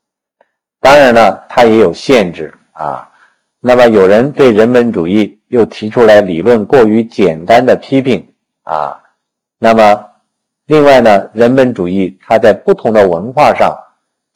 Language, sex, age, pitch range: Chinese, male, 50-69, 95-125 Hz